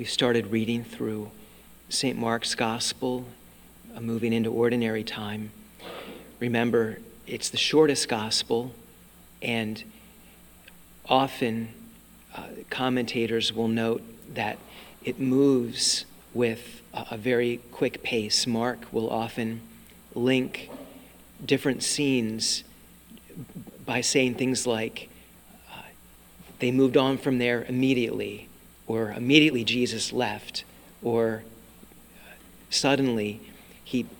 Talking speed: 95 wpm